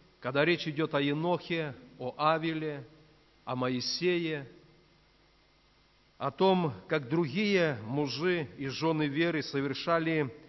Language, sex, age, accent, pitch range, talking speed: Russian, male, 50-69, native, 140-175 Hz, 105 wpm